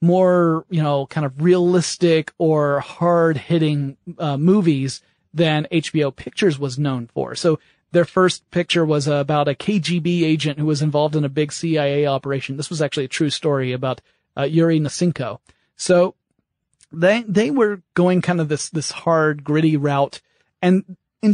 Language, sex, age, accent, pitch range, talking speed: English, male, 30-49, American, 145-175 Hz, 165 wpm